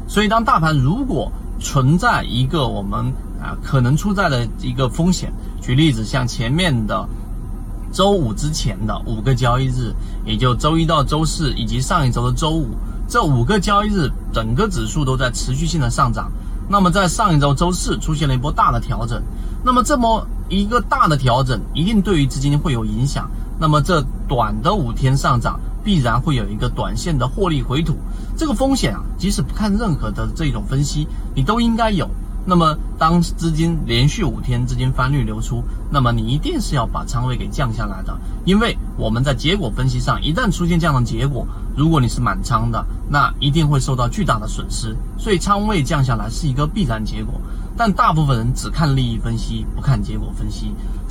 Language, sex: Chinese, male